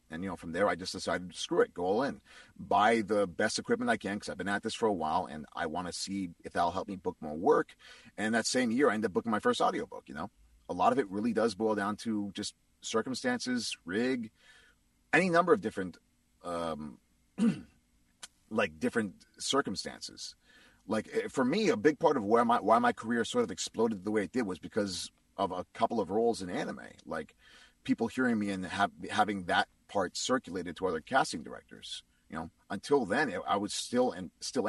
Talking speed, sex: 215 wpm, male